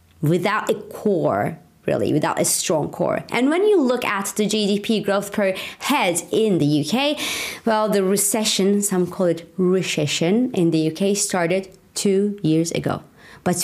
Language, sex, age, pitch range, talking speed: English, female, 30-49, 170-240 Hz, 160 wpm